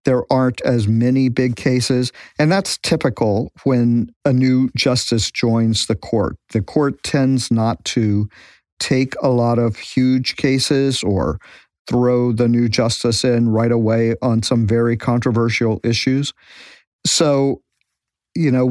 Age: 50-69